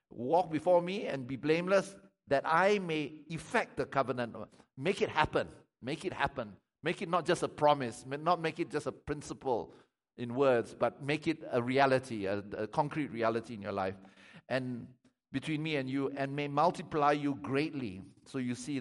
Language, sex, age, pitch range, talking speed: English, male, 50-69, 130-175 Hz, 180 wpm